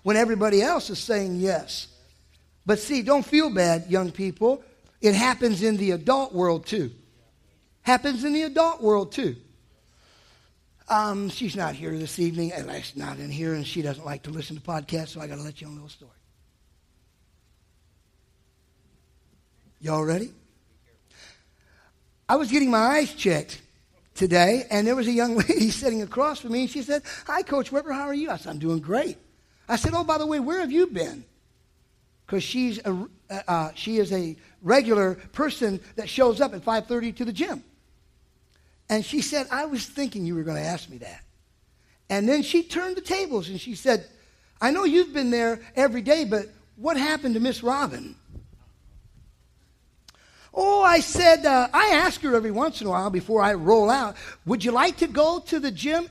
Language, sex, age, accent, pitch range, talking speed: English, male, 50-69, American, 165-275 Hz, 185 wpm